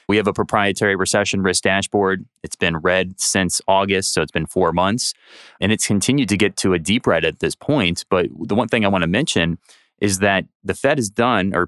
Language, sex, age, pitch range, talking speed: English, male, 30-49, 90-105 Hz, 225 wpm